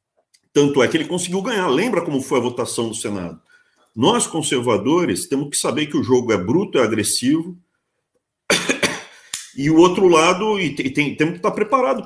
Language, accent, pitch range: Portuguese, Brazilian, 155-240 Hz